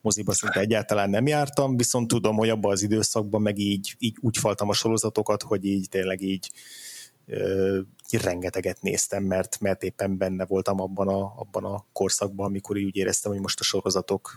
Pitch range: 100-115 Hz